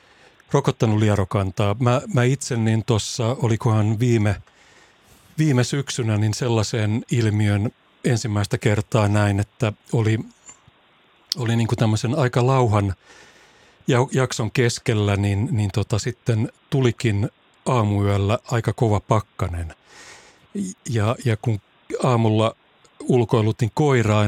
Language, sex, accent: Finnish, male, native